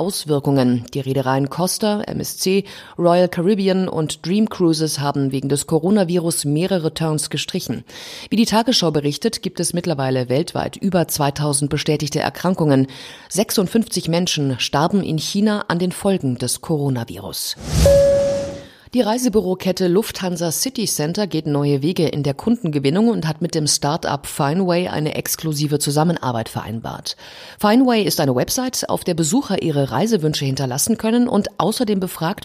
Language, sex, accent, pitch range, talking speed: German, female, German, 140-195 Hz, 135 wpm